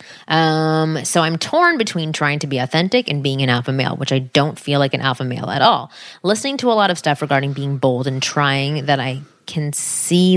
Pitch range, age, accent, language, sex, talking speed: 140-160 Hz, 20-39, American, English, female, 225 wpm